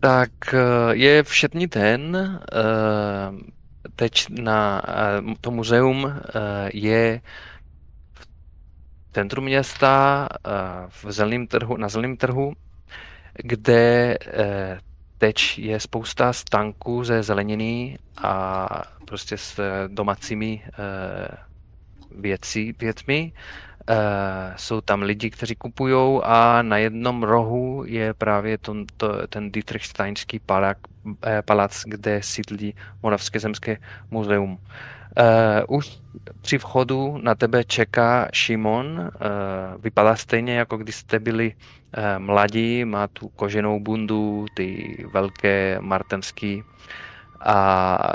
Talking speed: 90 wpm